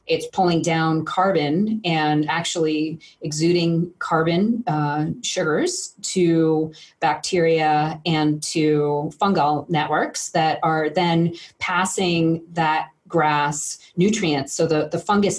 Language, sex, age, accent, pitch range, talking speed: English, female, 30-49, American, 145-165 Hz, 105 wpm